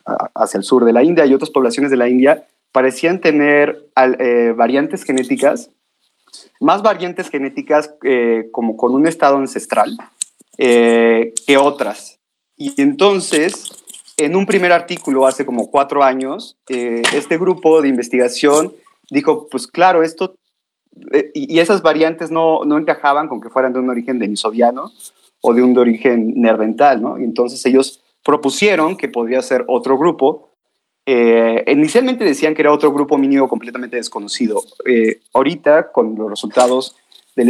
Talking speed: 150 wpm